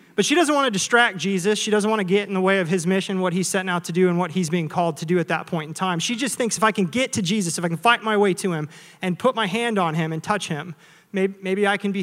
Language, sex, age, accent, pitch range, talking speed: English, male, 30-49, American, 175-205 Hz, 335 wpm